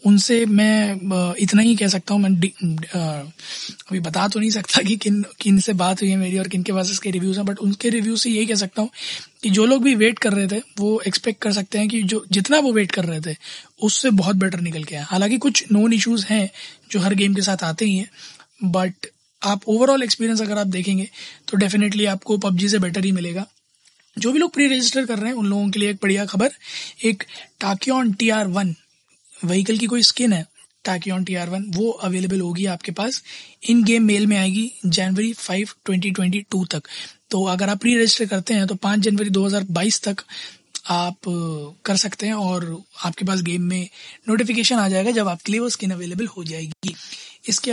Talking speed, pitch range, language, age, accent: 205 wpm, 190-220 Hz, Hindi, 20-39, native